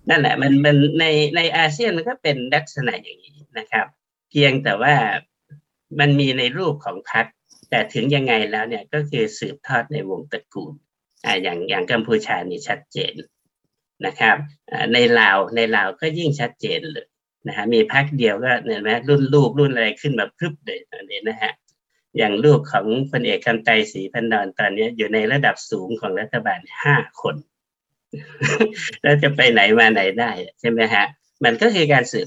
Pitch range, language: 130-150 Hz, Thai